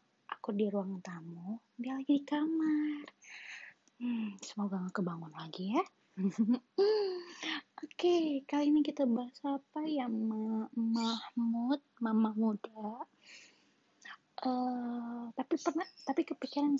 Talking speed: 115 wpm